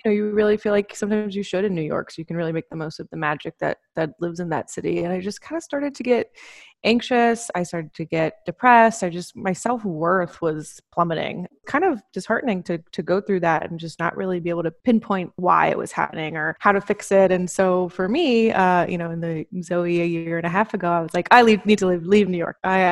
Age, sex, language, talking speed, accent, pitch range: 20-39, female, English, 265 wpm, American, 170-205 Hz